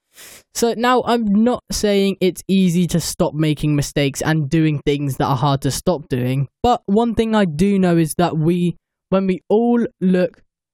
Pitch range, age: 145-185 Hz, 10-29